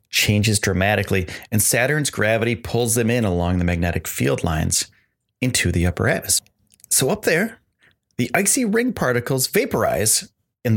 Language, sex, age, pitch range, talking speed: English, male, 30-49, 100-125 Hz, 145 wpm